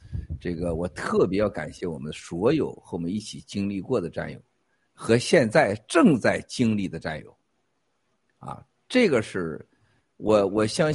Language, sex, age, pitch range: Chinese, male, 50-69, 100-140 Hz